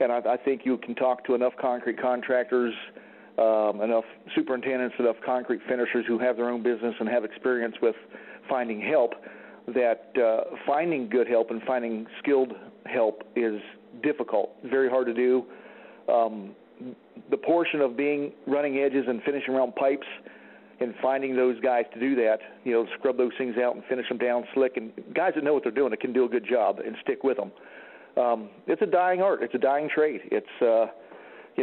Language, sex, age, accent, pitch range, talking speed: English, male, 50-69, American, 120-145 Hz, 190 wpm